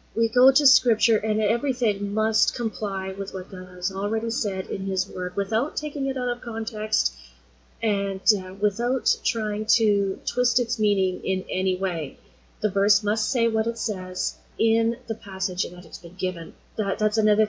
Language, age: English, 30-49